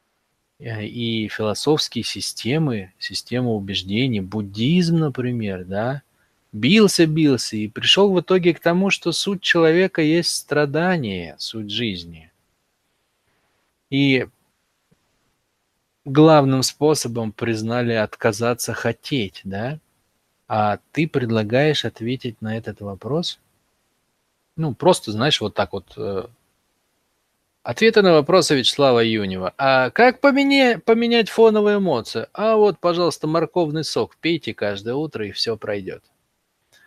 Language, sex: Russian, male